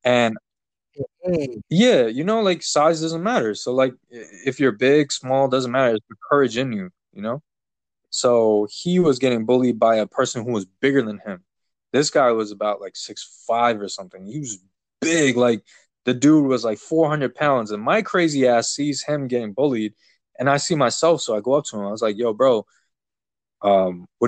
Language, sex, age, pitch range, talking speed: English, male, 20-39, 120-170 Hz, 195 wpm